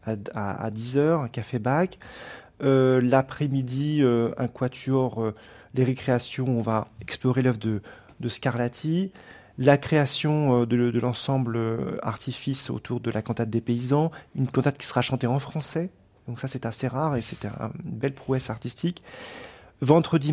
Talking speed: 160 wpm